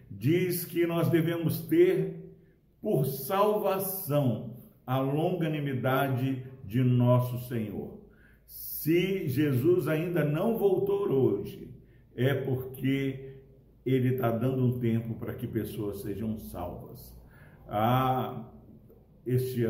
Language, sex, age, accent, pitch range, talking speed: Portuguese, male, 50-69, Brazilian, 120-165 Hz, 95 wpm